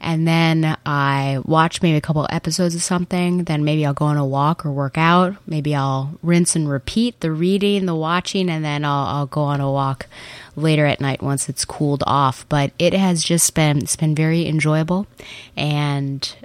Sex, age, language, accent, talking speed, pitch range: female, 20-39, English, American, 195 wpm, 145-170 Hz